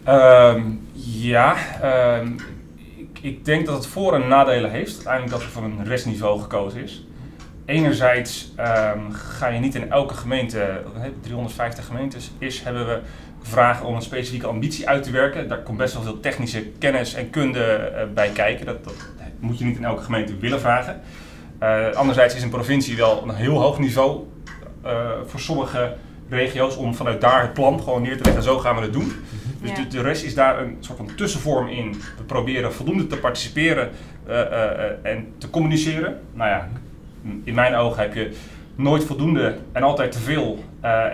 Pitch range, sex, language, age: 115-135 Hz, male, Dutch, 30-49